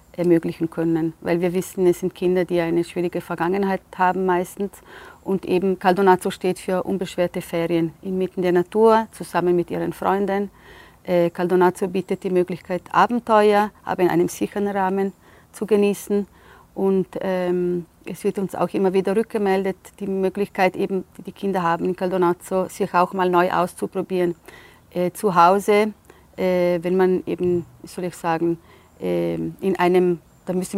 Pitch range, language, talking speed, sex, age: 175-195 Hz, German, 150 wpm, female, 40-59